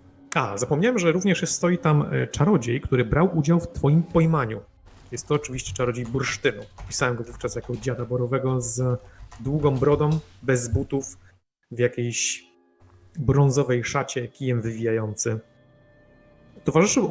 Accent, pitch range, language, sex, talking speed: native, 110-145 Hz, Polish, male, 125 wpm